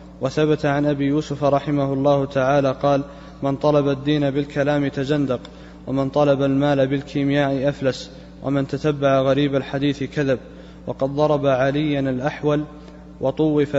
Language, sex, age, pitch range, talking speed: Arabic, male, 20-39, 130-145 Hz, 120 wpm